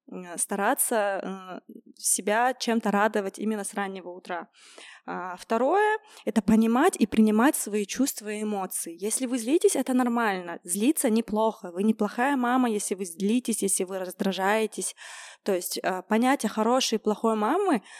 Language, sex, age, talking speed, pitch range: Russian, female, 20-39, 135 wpm, 200-255 Hz